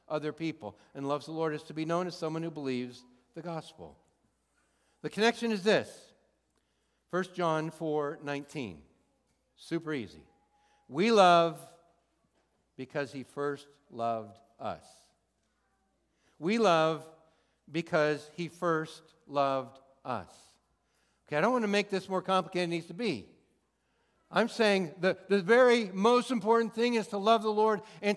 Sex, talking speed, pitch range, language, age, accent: male, 145 wpm, 130-185 Hz, English, 60-79, American